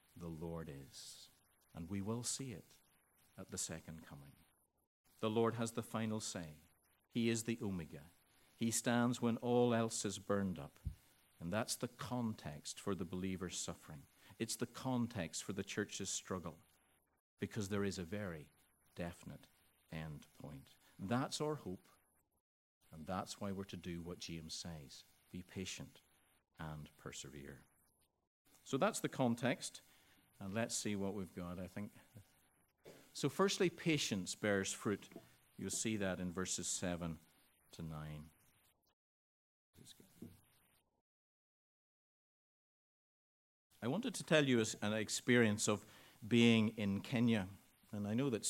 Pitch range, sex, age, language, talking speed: 85-115 Hz, male, 50-69, English, 135 wpm